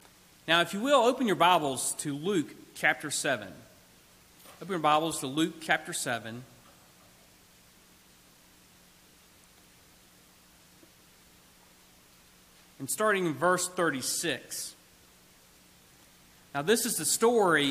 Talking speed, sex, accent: 95 wpm, male, American